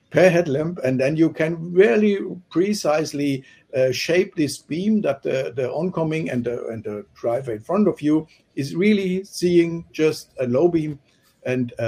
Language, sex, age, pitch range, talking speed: English, male, 60-79, 120-165 Hz, 165 wpm